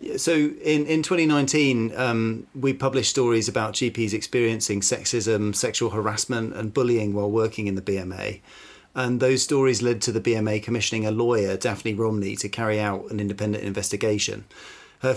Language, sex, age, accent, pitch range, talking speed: English, male, 40-59, British, 105-125 Hz, 160 wpm